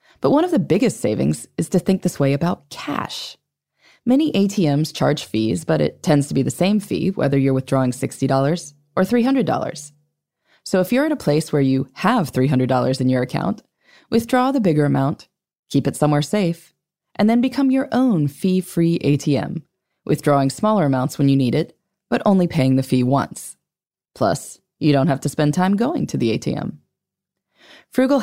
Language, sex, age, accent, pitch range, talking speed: English, female, 20-39, American, 140-200 Hz, 180 wpm